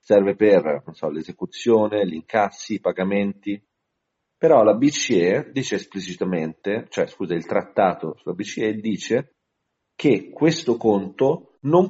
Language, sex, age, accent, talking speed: Italian, male, 40-59, native, 125 wpm